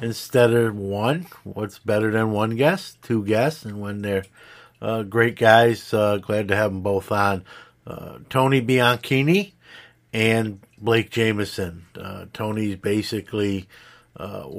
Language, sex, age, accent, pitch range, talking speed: English, male, 50-69, American, 105-120 Hz, 135 wpm